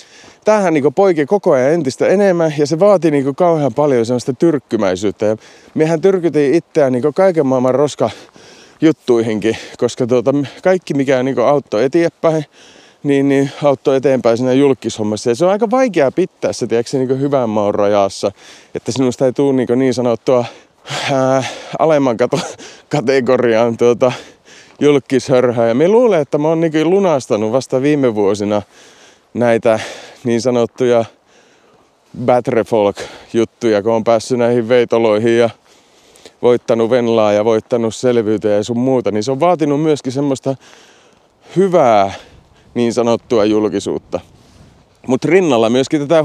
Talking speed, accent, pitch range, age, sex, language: 120 wpm, native, 115-145 Hz, 30-49, male, Finnish